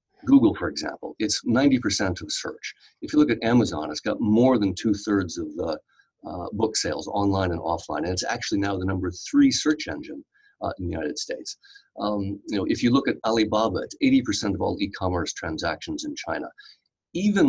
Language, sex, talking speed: English, male, 195 wpm